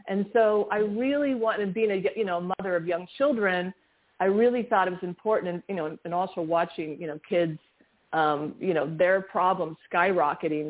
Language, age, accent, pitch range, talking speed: English, 40-59, American, 165-205 Hz, 190 wpm